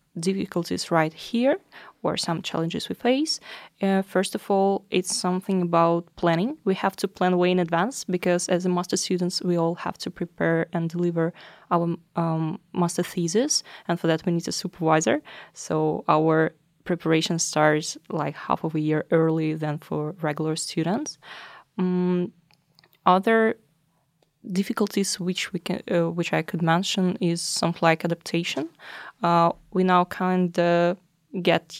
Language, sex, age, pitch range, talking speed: English, female, 20-39, 160-185 Hz, 155 wpm